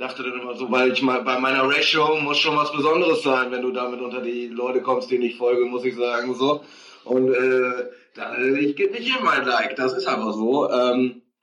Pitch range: 125-145 Hz